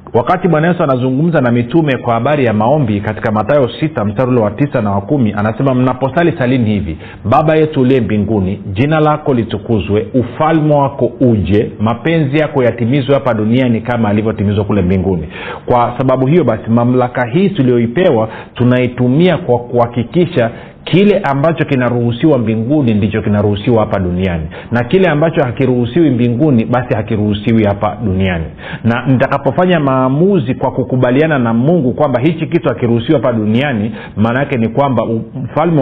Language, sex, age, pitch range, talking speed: Swahili, male, 40-59, 110-145 Hz, 140 wpm